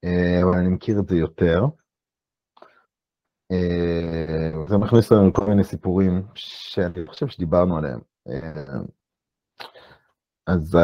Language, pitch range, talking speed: Hebrew, 85-100 Hz, 100 wpm